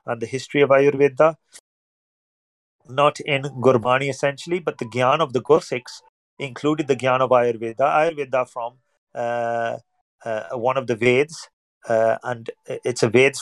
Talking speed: 150 wpm